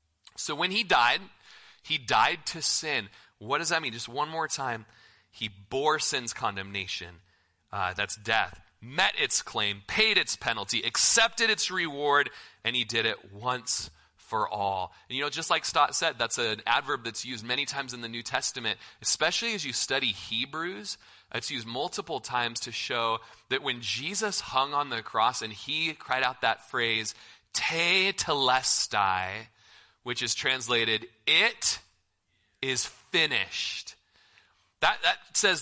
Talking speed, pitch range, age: 155 wpm, 115-165 Hz, 30-49